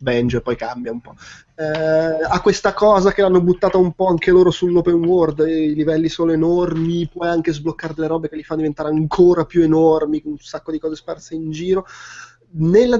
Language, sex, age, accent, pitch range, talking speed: Italian, male, 20-39, native, 130-165 Hz, 200 wpm